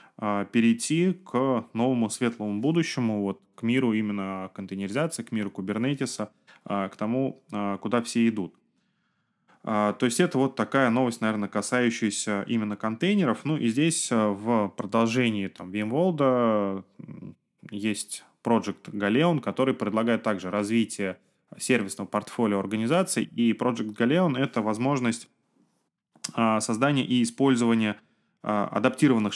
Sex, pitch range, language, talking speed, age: male, 100-120 Hz, Russian, 110 wpm, 20-39